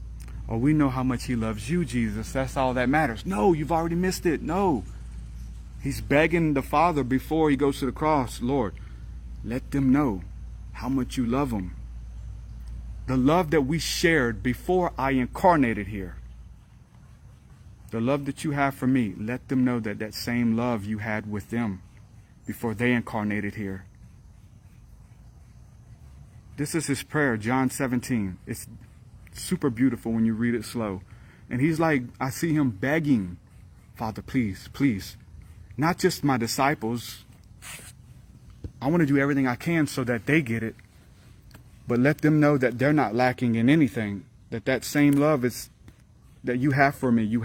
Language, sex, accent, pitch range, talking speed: English, male, American, 105-140 Hz, 165 wpm